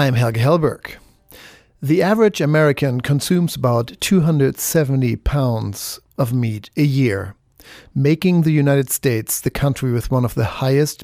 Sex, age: male, 50-69